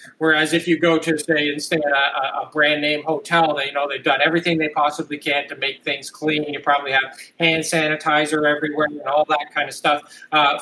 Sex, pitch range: male, 145-165 Hz